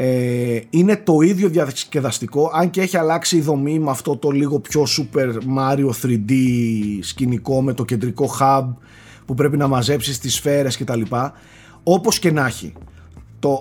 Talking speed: 165 wpm